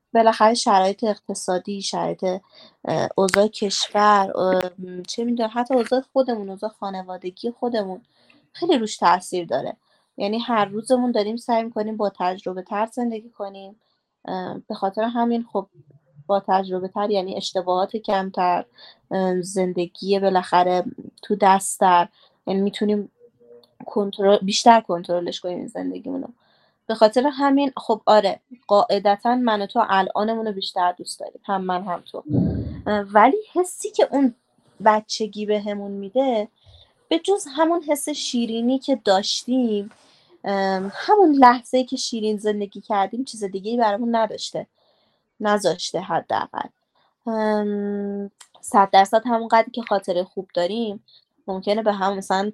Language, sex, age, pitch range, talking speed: Persian, female, 20-39, 190-235 Hz, 120 wpm